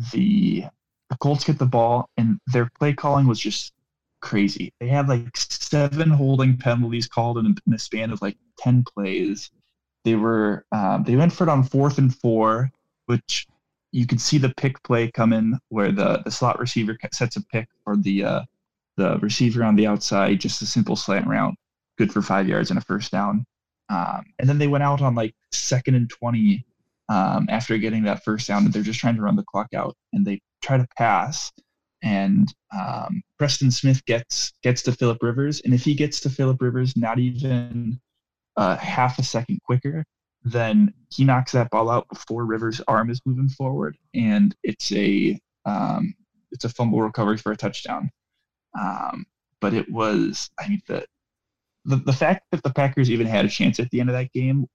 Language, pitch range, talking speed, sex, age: English, 115-140 Hz, 195 wpm, male, 20-39